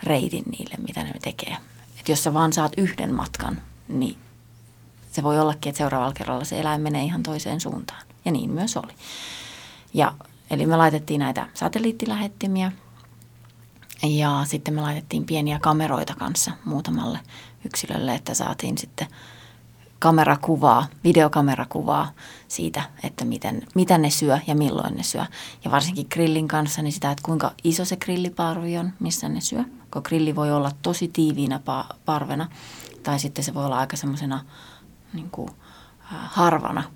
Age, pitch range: 30-49, 140-165 Hz